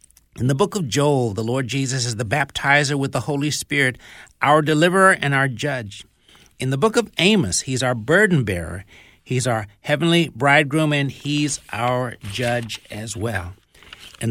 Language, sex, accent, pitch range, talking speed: English, male, American, 115-160 Hz, 170 wpm